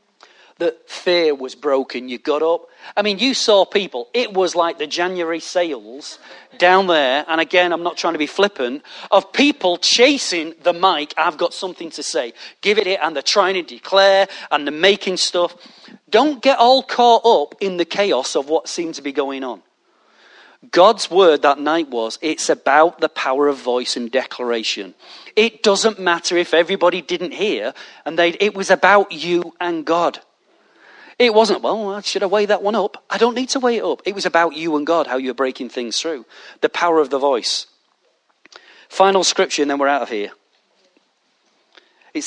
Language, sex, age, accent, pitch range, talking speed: English, male, 40-59, British, 150-205 Hz, 190 wpm